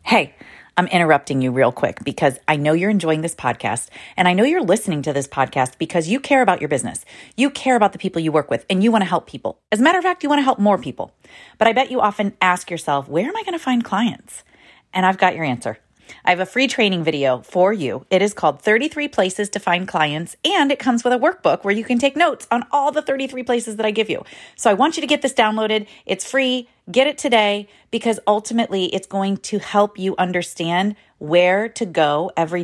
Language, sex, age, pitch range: English, female, 30-49, 155-225 Hz